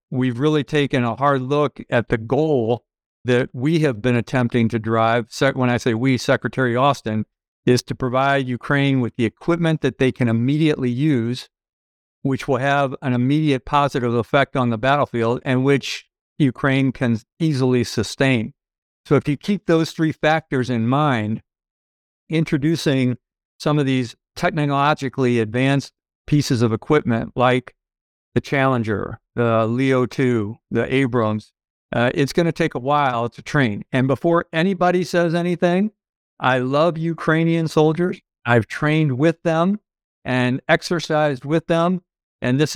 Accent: American